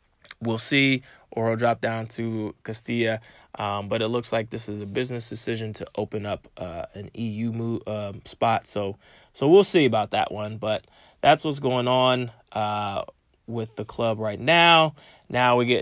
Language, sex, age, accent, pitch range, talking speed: English, male, 20-39, American, 110-140 Hz, 180 wpm